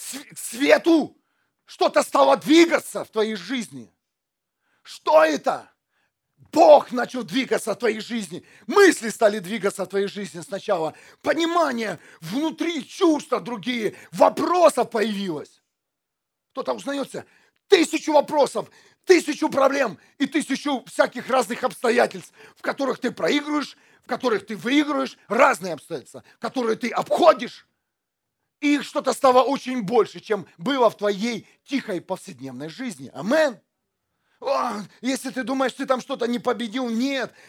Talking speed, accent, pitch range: 120 wpm, native, 235-295 Hz